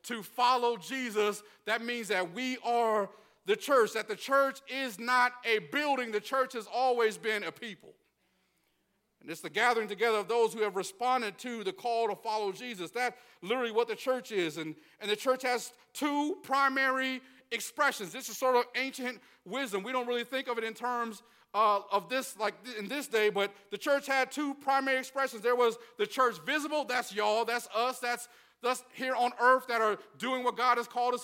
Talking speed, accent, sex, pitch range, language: 200 wpm, American, male, 225-260 Hz, English